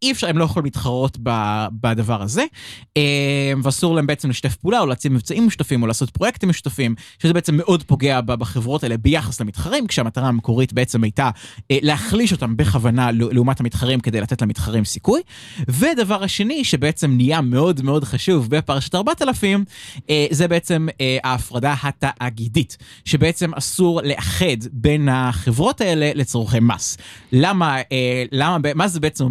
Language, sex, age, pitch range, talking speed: Hebrew, male, 20-39, 125-180 Hz, 135 wpm